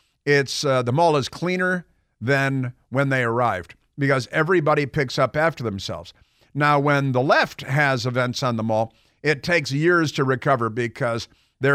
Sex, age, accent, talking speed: male, 50-69, American, 165 wpm